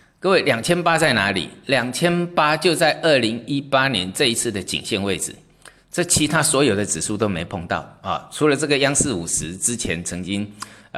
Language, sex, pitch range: Chinese, male, 105-155 Hz